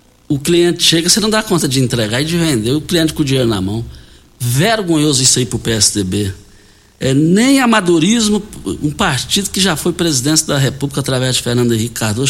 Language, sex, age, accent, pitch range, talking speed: Portuguese, male, 60-79, Brazilian, 115-165 Hz, 195 wpm